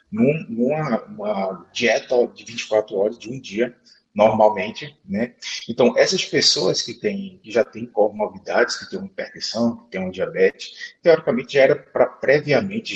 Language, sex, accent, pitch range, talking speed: Portuguese, male, Brazilian, 105-150 Hz, 155 wpm